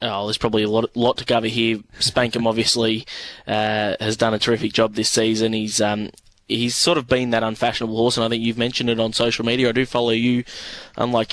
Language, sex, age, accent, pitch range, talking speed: English, male, 20-39, Australian, 115-125 Hz, 220 wpm